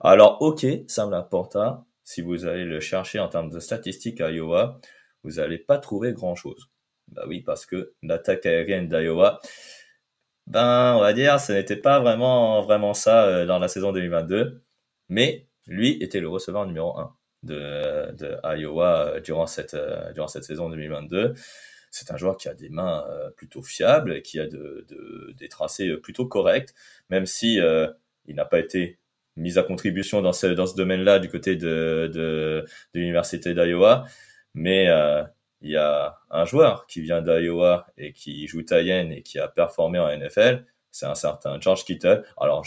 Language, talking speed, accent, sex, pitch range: French, 180 wpm, French, male, 85-115 Hz